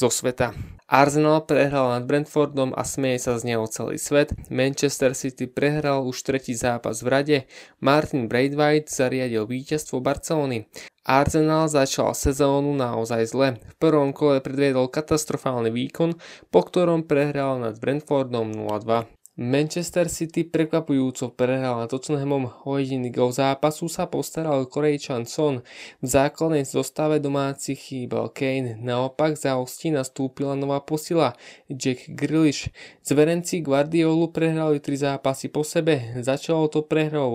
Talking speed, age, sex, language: 130 wpm, 20-39, male, Slovak